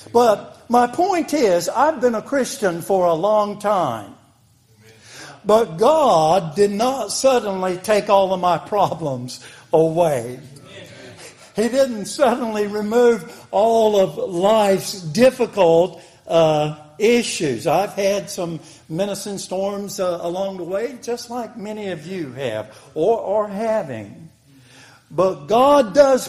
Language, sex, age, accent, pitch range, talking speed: English, male, 60-79, American, 170-230 Hz, 125 wpm